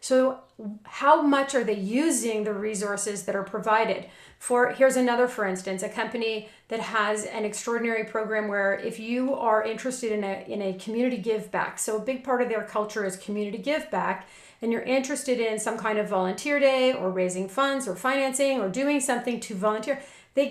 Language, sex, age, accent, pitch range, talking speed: English, female, 40-59, American, 215-275 Hz, 190 wpm